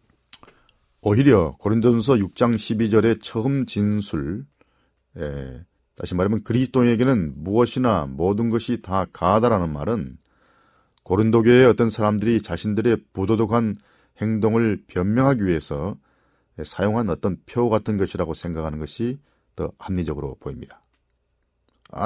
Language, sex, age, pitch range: Korean, male, 40-59, 85-115 Hz